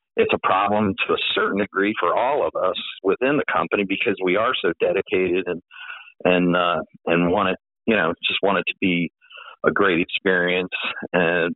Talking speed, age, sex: 185 wpm, 50-69, male